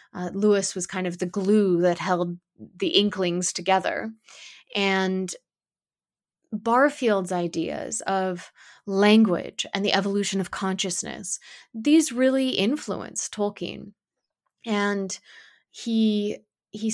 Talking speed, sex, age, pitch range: 105 wpm, female, 20-39, 190-220 Hz